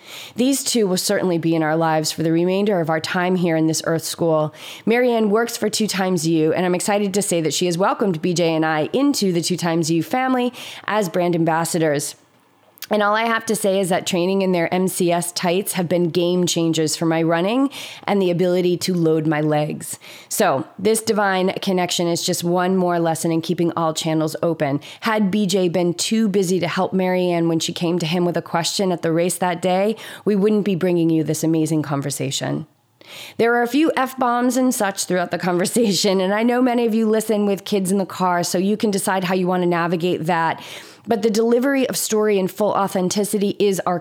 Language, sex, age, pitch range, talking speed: English, female, 20-39, 165-205 Hz, 215 wpm